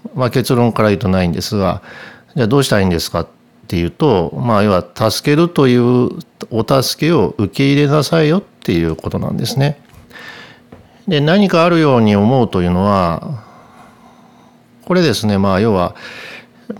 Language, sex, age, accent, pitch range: Japanese, male, 50-69, native, 95-135 Hz